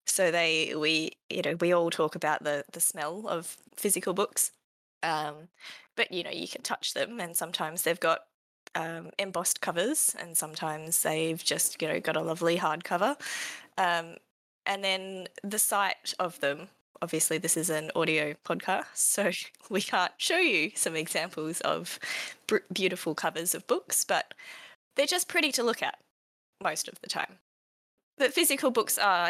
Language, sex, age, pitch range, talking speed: English, female, 20-39, 160-210 Hz, 165 wpm